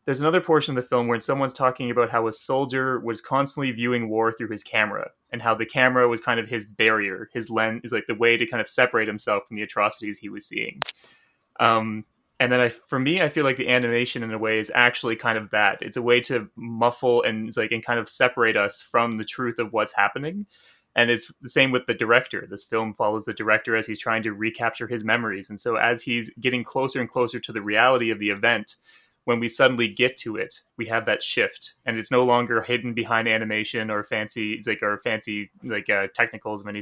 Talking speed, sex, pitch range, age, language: 230 wpm, male, 110-125 Hz, 20-39, English